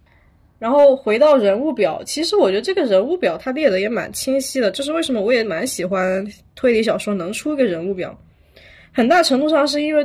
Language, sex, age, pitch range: Chinese, female, 20-39, 200-275 Hz